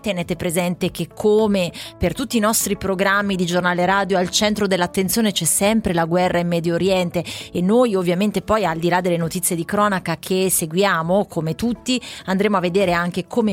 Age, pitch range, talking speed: 30-49, 175-210 Hz, 185 wpm